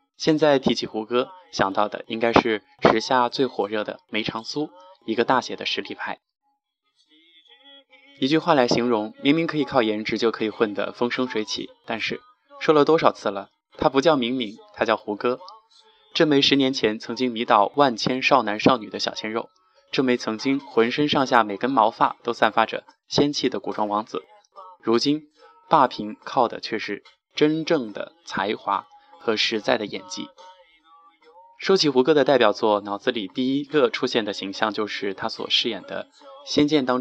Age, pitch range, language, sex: 20-39, 115-175 Hz, Chinese, male